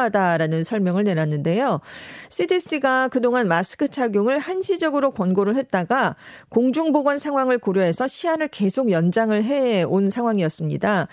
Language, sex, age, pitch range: Korean, female, 40-59, 185-270 Hz